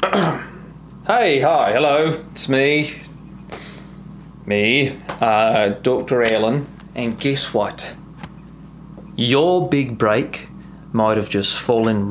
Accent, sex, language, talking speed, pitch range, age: British, male, English, 95 wpm, 125-180 Hz, 20-39